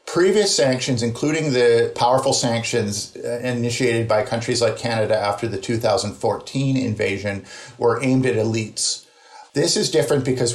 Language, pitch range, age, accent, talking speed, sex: English, 110-130 Hz, 50-69, American, 130 wpm, male